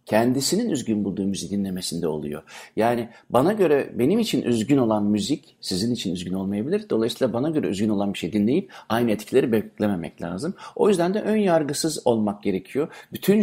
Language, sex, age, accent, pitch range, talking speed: Turkish, male, 60-79, native, 100-130 Hz, 170 wpm